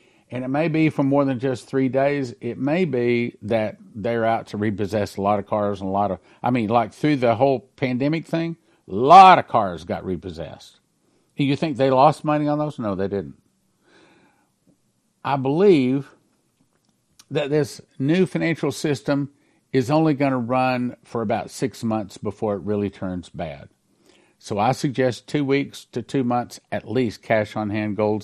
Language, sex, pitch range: English, male, 105-145 Hz